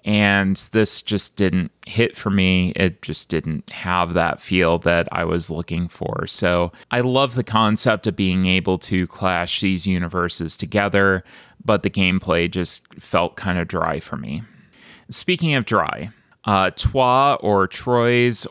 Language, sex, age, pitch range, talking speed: English, male, 30-49, 95-115 Hz, 155 wpm